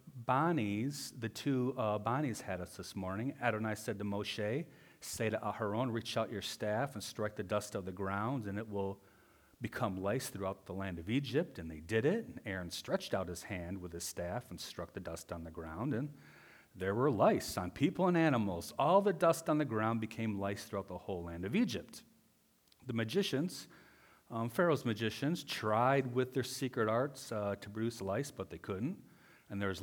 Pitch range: 100-130 Hz